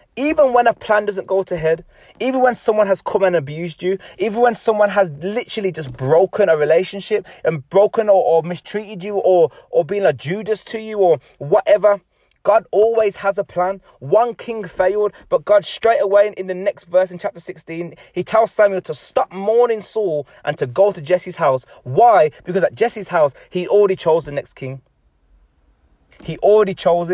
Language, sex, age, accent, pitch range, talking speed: English, male, 20-39, British, 170-210 Hz, 190 wpm